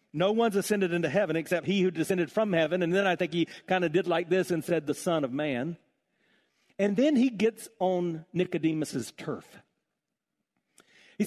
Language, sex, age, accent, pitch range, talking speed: English, male, 50-69, American, 165-220 Hz, 185 wpm